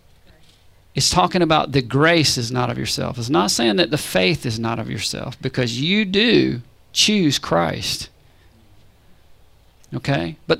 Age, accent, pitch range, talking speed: 40-59, American, 135-185 Hz, 145 wpm